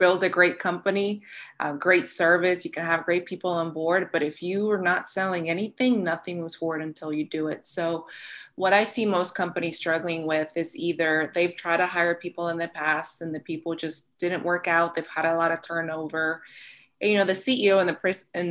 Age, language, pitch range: 20-39, English, 160-180 Hz